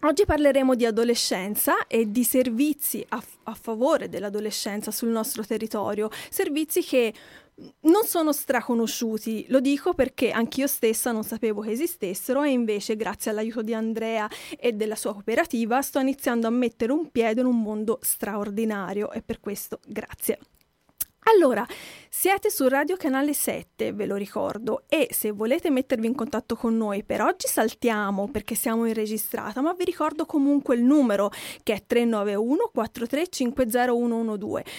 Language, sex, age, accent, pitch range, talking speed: Italian, female, 30-49, native, 225-285 Hz, 150 wpm